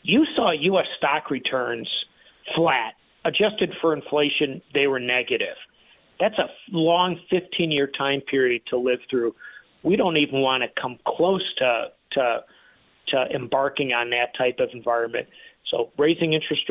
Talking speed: 140 wpm